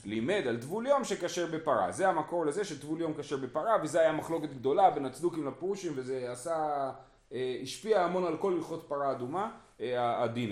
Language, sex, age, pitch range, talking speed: Hebrew, male, 30-49, 130-185 Hz, 170 wpm